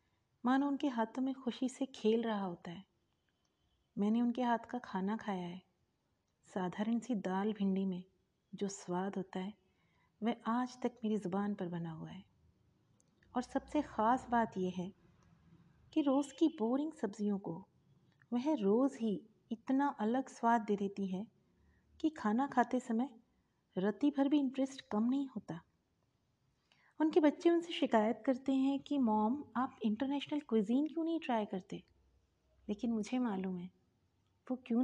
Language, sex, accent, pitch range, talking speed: Hindi, female, native, 195-270 Hz, 150 wpm